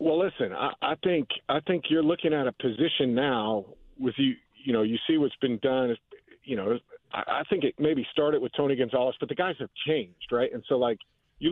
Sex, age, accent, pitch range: male, 40-59, American, 120-145 Hz